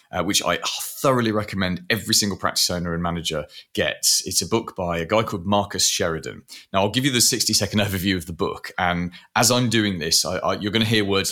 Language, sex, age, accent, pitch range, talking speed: English, male, 30-49, British, 85-105 Hz, 215 wpm